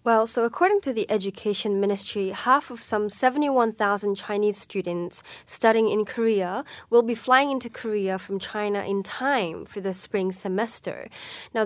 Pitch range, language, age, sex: 190-230 Hz, Korean, 10-29, female